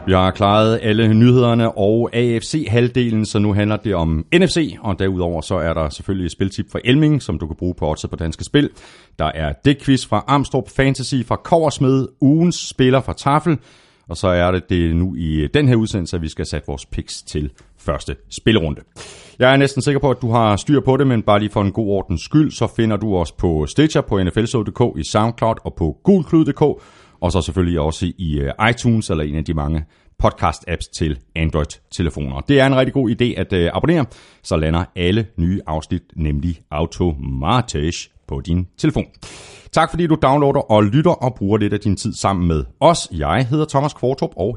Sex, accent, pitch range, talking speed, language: male, native, 85-130 Hz, 200 wpm, Danish